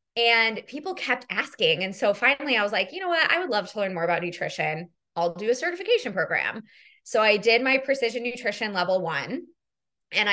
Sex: female